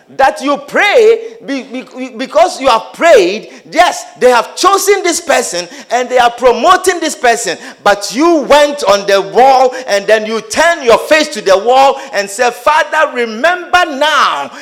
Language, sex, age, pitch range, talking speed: English, male, 50-69, 230-330 Hz, 160 wpm